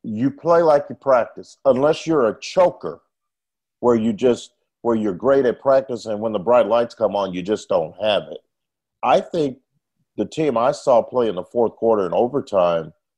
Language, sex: English, male